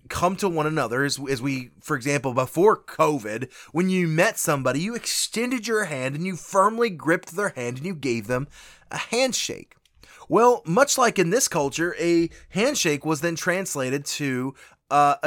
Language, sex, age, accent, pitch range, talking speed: English, male, 20-39, American, 135-180 Hz, 175 wpm